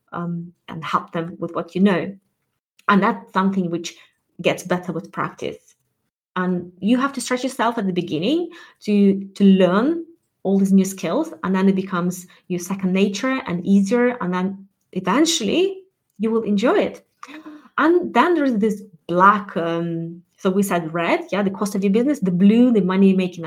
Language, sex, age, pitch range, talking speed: English, female, 20-39, 180-230 Hz, 175 wpm